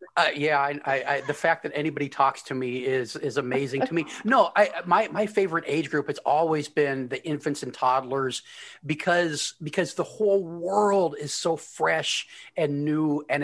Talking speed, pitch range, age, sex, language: 185 wpm, 145-180 Hz, 40-59, male, English